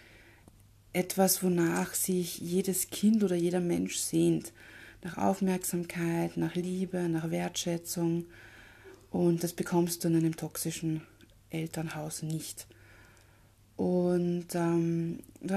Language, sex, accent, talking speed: German, female, German, 105 wpm